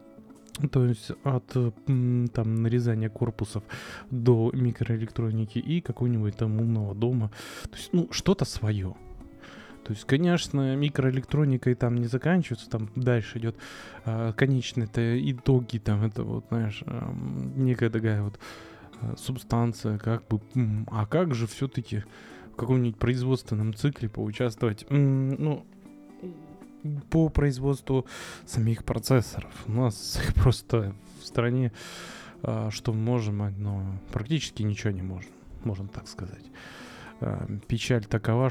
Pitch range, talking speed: 105-125 Hz, 115 wpm